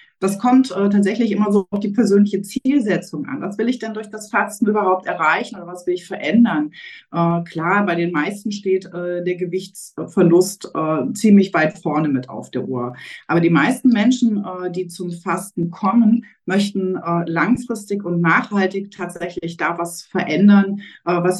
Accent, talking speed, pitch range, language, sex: German, 175 wpm, 170-205 Hz, German, female